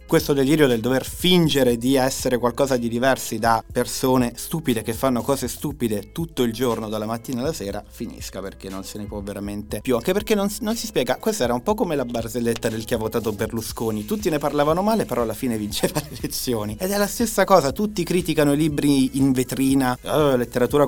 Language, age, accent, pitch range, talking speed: Italian, 30-49, native, 110-140 Hz, 210 wpm